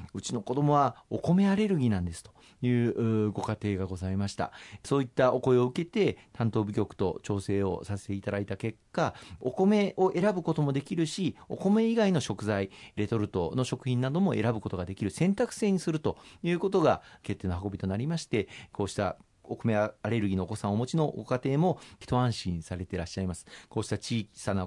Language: Japanese